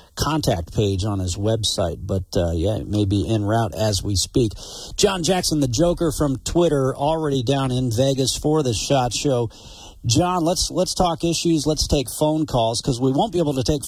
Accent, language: American, English